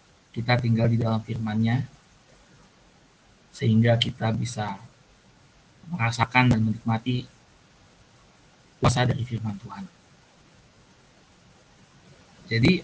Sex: male